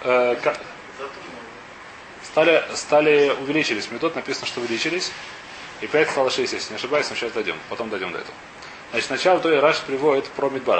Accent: native